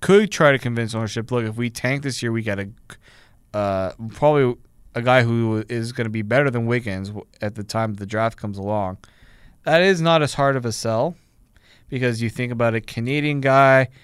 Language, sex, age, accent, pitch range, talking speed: English, male, 20-39, American, 115-140 Hz, 205 wpm